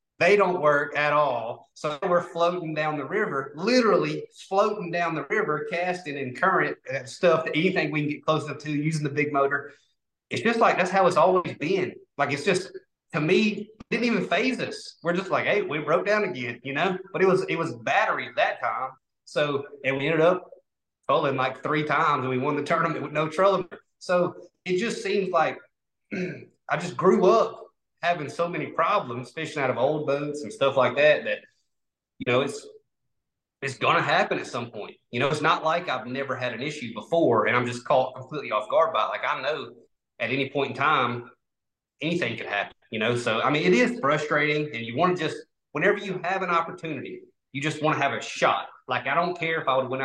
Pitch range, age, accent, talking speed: 135-180 Hz, 30-49, American, 220 wpm